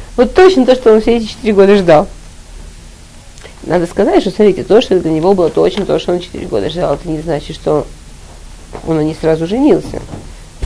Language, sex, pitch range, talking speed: Russian, female, 160-195 Hz, 195 wpm